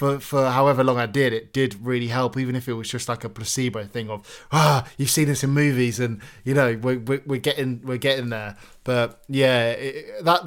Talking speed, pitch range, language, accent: 225 wpm, 120-160 Hz, English, British